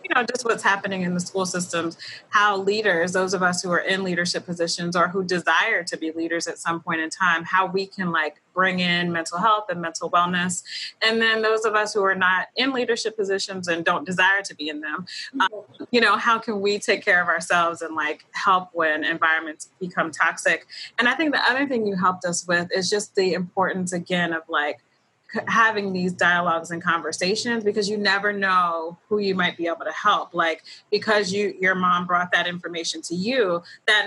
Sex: female